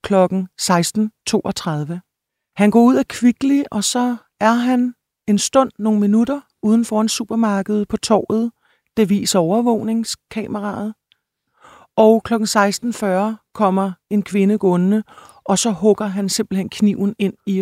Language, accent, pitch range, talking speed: Danish, native, 175-210 Hz, 135 wpm